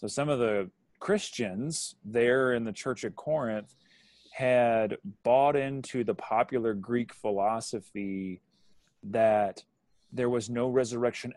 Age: 30-49